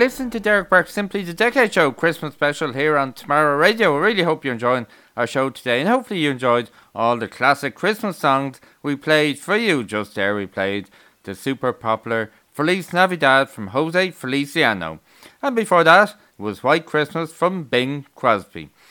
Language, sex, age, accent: English, male, 30-49, Irish